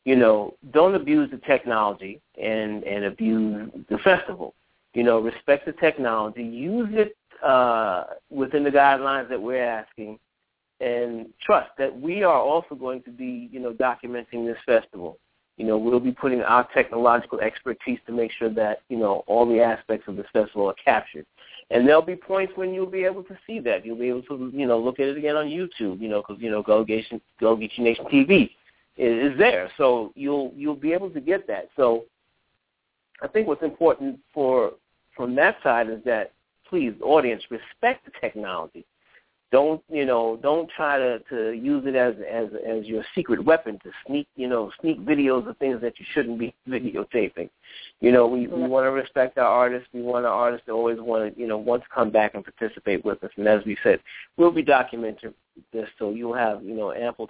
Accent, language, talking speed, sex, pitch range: American, English, 195 wpm, male, 110-145 Hz